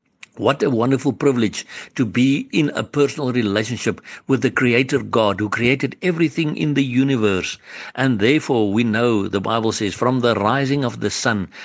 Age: 60-79